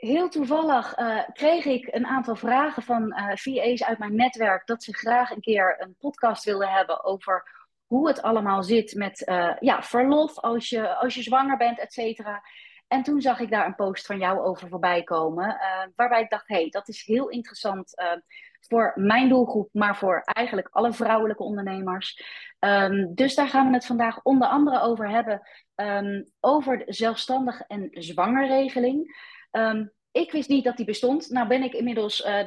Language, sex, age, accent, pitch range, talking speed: Dutch, female, 30-49, Dutch, 200-250 Hz, 175 wpm